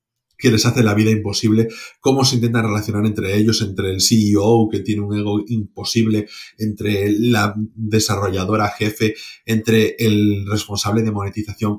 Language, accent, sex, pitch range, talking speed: Spanish, Spanish, male, 105-125 Hz, 150 wpm